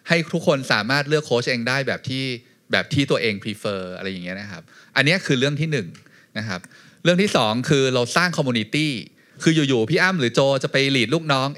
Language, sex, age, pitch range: Thai, male, 20-39, 115-155 Hz